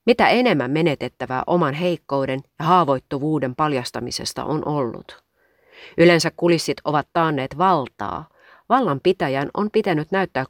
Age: 30-49